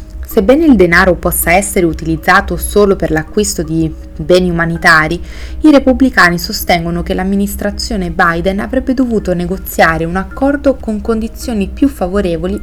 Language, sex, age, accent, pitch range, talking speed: Italian, female, 30-49, native, 165-210 Hz, 130 wpm